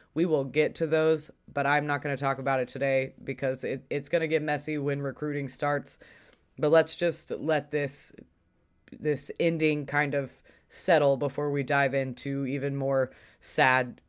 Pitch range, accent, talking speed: 140-155 Hz, American, 175 wpm